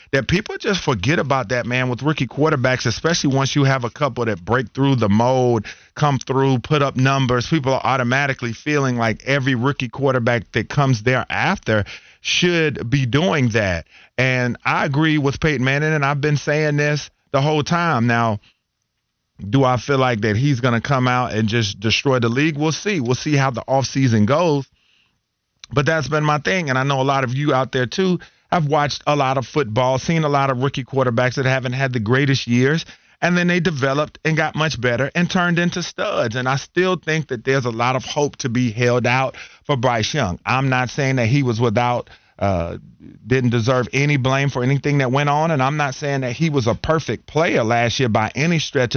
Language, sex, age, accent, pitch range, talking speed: English, male, 40-59, American, 125-150 Hz, 210 wpm